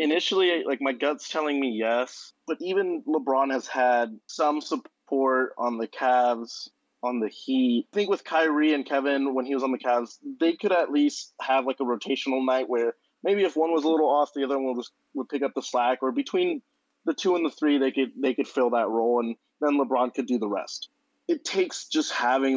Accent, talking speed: American, 225 wpm